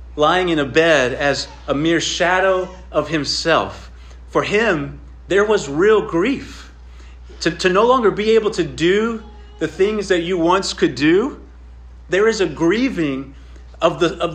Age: 30-49